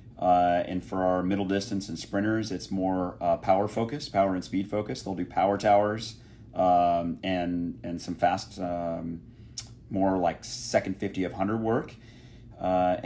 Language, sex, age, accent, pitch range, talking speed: English, male, 30-49, American, 95-115 Hz, 160 wpm